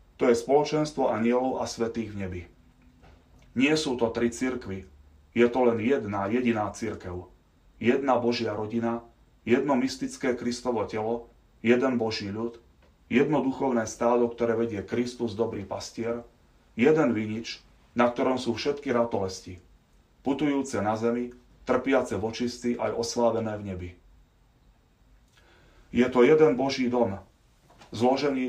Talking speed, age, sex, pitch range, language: 125 wpm, 30-49, male, 105-125 Hz, Slovak